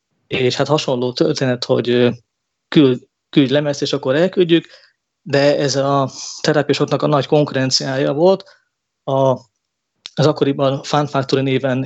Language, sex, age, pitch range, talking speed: Hungarian, male, 20-39, 130-155 Hz, 125 wpm